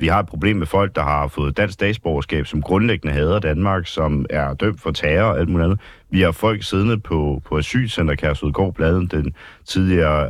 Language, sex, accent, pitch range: Danish, male, native, 80-105 Hz